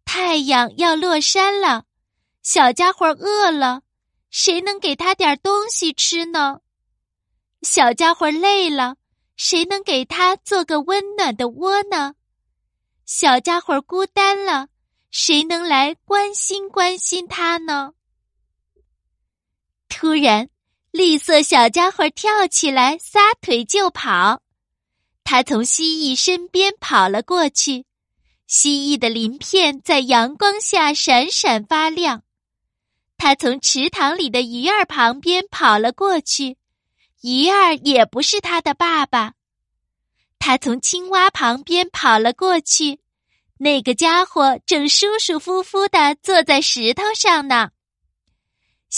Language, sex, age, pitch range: Chinese, female, 20-39, 265-370 Hz